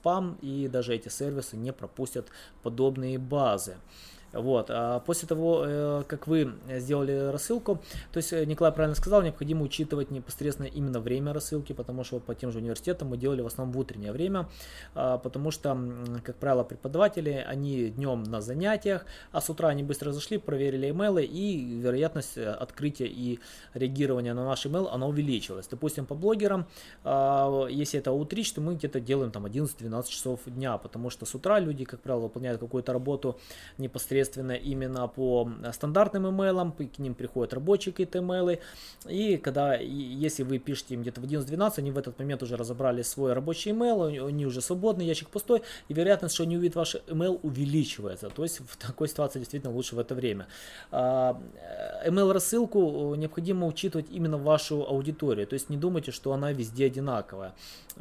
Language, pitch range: Russian, 125-165 Hz